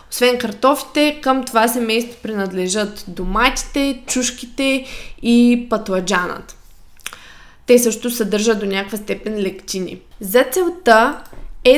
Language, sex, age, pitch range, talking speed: Bulgarian, female, 20-39, 205-250 Hz, 100 wpm